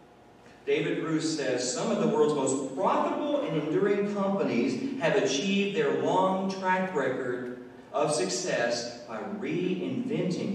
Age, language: 40-59, English